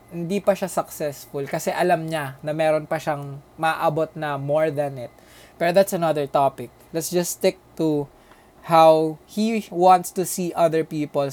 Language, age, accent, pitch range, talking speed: English, 20-39, Filipino, 145-185 Hz, 165 wpm